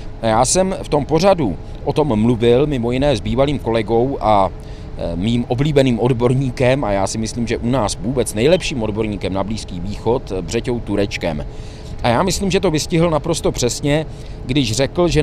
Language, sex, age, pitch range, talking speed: Czech, male, 40-59, 110-145 Hz, 170 wpm